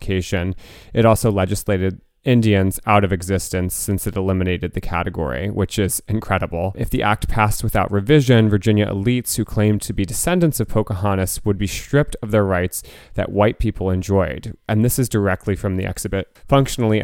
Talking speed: 170 wpm